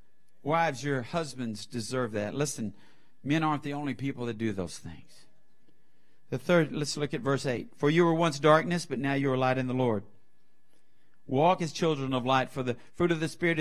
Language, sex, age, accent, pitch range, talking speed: English, male, 50-69, American, 150-225 Hz, 205 wpm